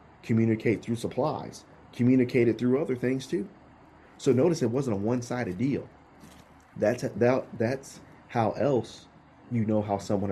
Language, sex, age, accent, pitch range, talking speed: English, male, 30-49, American, 100-125 Hz, 150 wpm